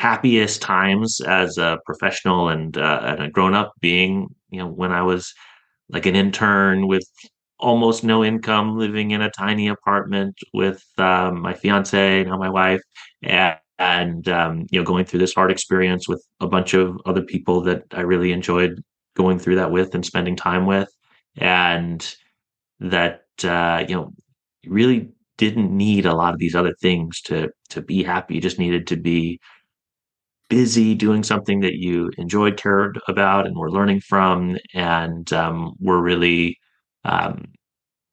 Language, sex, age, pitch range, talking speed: English, male, 30-49, 85-100 Hz, 160 wpm